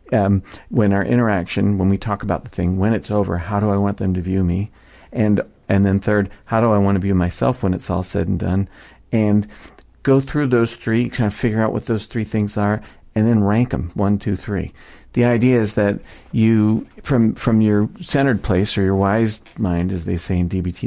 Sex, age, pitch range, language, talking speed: male, 40-59, 95-110 Hz, English, 225 wpm